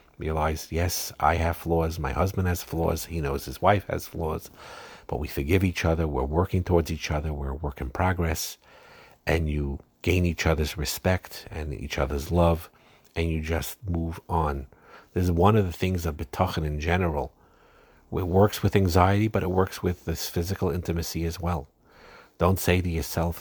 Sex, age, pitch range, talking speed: male, 50-69, 80-90 Hz, 185 wpm